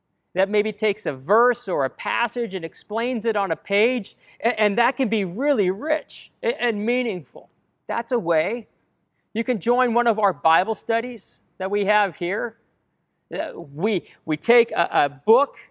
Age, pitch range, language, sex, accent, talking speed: 40-59, 185-230 Hz, English, male, American, 170 wpm